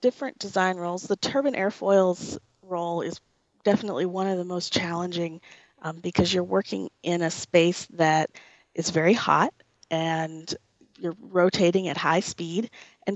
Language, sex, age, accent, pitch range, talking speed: English, female, 30-49, American, 165-190 Hz, 145 wpm